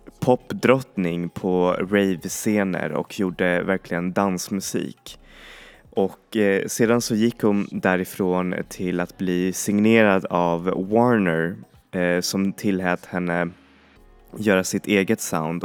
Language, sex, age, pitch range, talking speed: Swedish, male, 20-39, 90-105 Hz, 110 wpm